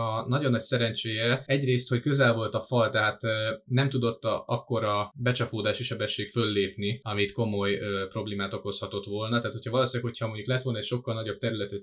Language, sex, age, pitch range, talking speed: Hungarian, male, 20-39, 100-125 Hz, 185 wpm